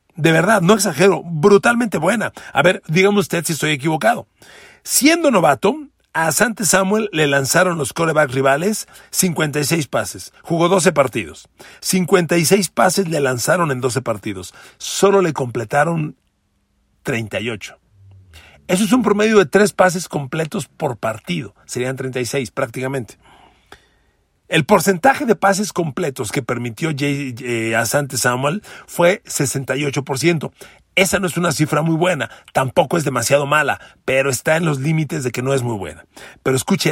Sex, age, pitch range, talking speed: male, 40-59, 130-190 Hz, 145 wpm